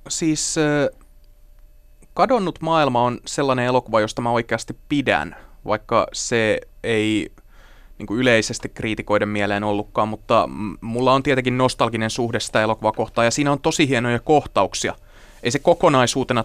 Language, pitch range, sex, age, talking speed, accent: Finnish, 105-125 Hz, male, 20-39, 130 wpm, native